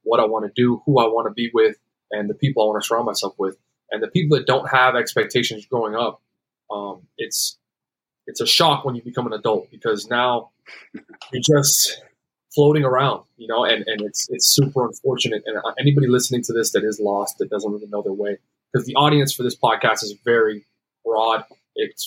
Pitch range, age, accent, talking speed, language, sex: 115-140 Hz, 20-39, American, 210 wpm, English, male